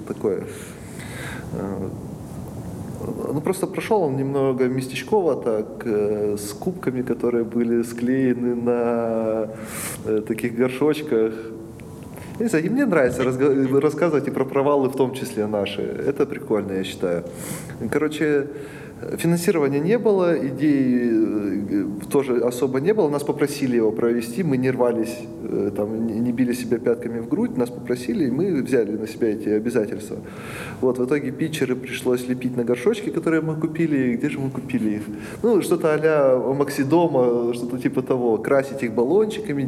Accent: native